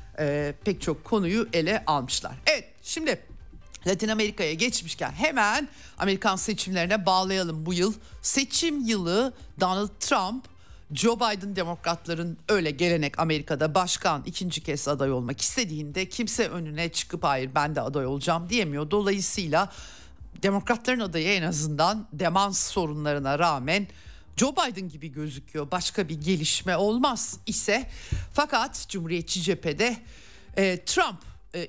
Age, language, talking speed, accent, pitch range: 60-79, Turkish, 120 wpm, native, 160-215 Hz